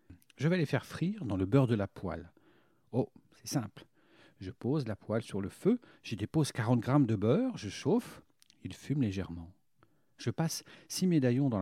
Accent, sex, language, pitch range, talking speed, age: French, male, French, 100-150 Hz, 190 wpm, 50-69